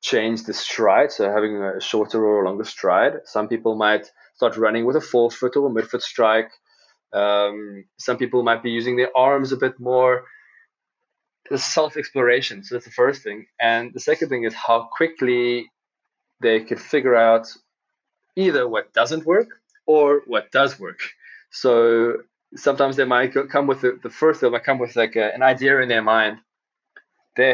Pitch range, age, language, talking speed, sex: 115-145 Hz, 20-39, English, 175 wpm, male